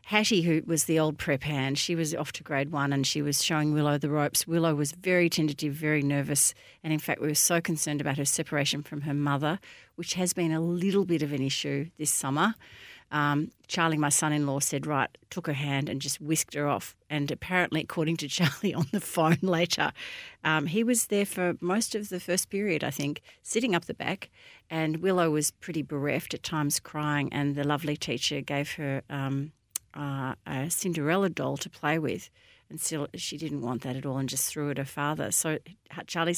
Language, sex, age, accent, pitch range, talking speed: English, female, 40-59, Australian, 145-180 Hz, 215 wpm